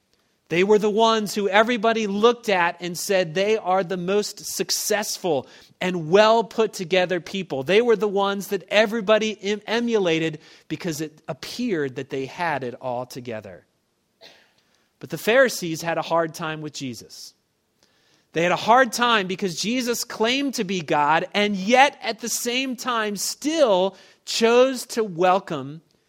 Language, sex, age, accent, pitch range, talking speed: English, male, 30-49, American, 155-215 Hz, 145 wpm